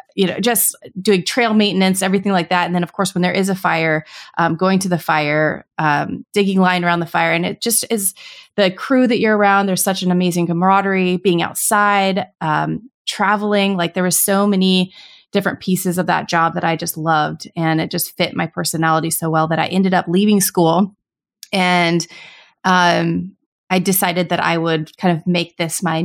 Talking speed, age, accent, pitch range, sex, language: 200 wpm, 30-49, American, 165-190 Hz, female, English